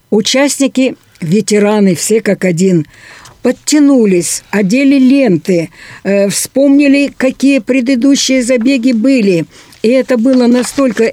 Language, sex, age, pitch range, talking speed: Russian, female, 60-79, 185-255 Hz, 95 wpm